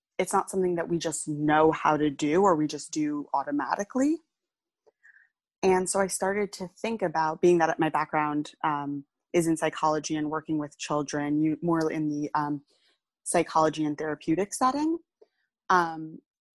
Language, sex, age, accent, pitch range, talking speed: English, female, 20-39, American, 150-175 Hz, 160 wpm